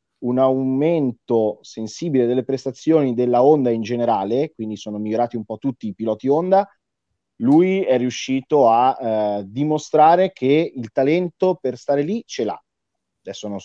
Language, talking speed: Italian, 150 wpm